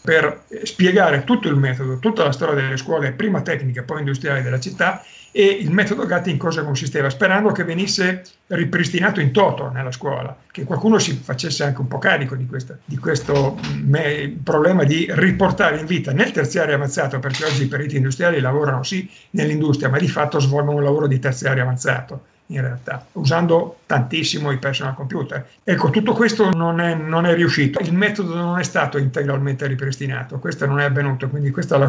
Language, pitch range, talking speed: Italian, 135-160 Hz, 185 wpm